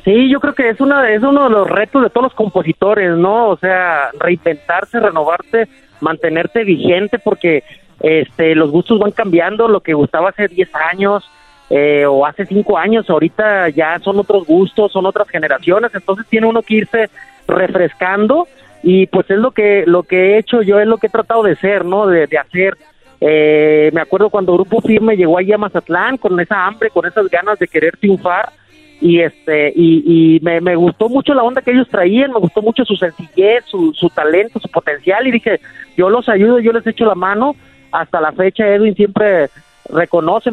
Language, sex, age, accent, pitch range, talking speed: Spanish, male, 40-59, Mexican, 170-220 Hz, 195 wpm